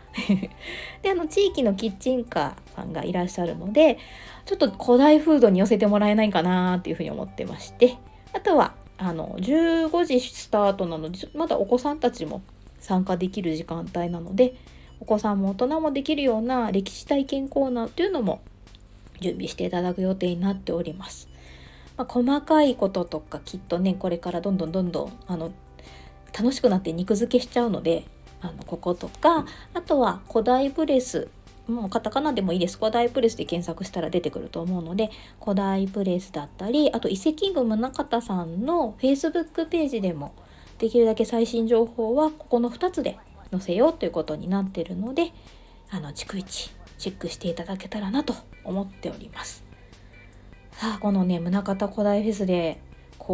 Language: Japanese